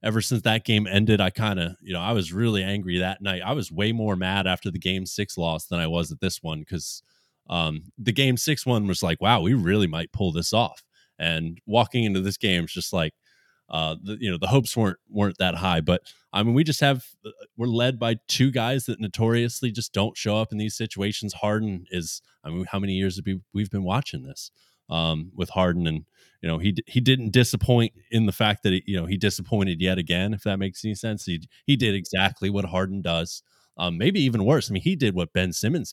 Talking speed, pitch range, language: 235 wpm, 90-115 Hz, English